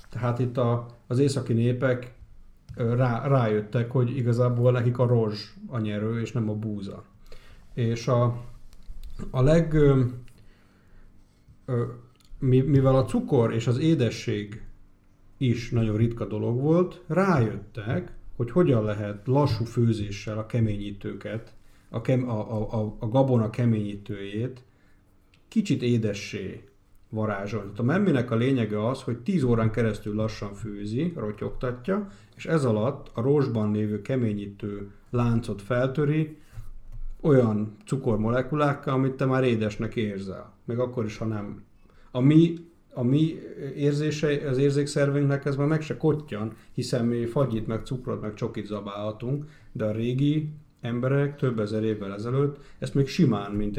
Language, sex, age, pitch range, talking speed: Hungarian, male, 50-69, 105-130 Hz, 130 wpm